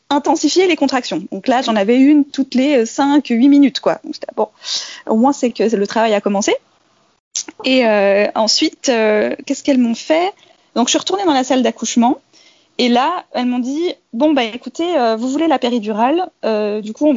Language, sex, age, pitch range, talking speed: English, female, 20-39, 220-300 Hz, 205 wpm